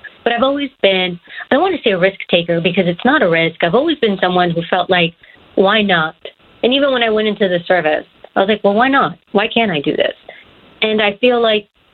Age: 40-59